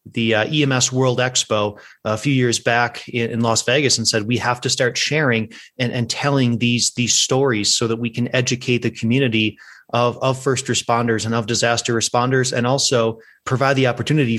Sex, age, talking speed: male, 30-49, 190 wpm